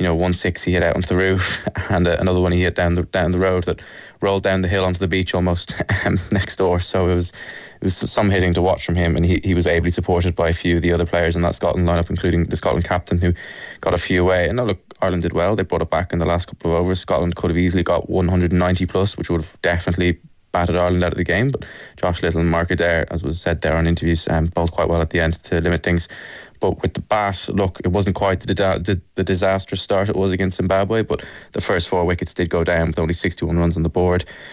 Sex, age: male, 20-39